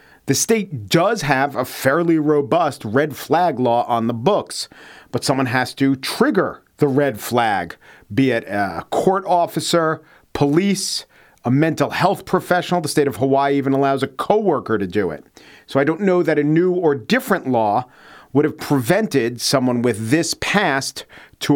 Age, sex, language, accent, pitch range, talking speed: 40-59, male, English, American, 115-150 Hz, 165 wpm